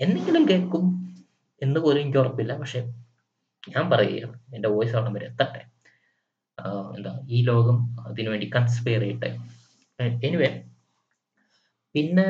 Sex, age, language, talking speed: male, 20-39, Malayalam, 100 wpm